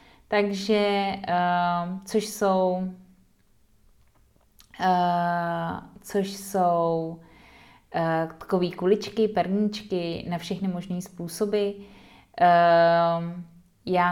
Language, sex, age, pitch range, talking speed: Czech, female, 30-49, 155-190 Hz, 55 wpm